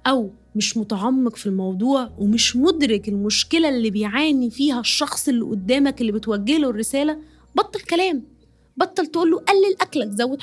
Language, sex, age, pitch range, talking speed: Arabic, female, 20-39, 220-275 Hz, 145 wpm